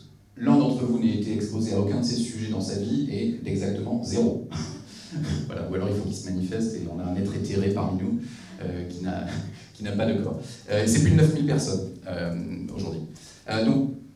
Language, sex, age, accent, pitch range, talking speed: French, male, 30-49, French, 95-115 Hz, 215 wpm